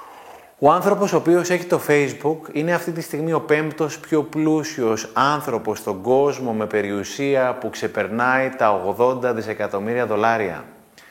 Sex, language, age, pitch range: male, Greek, 30-49, 120-160 Hz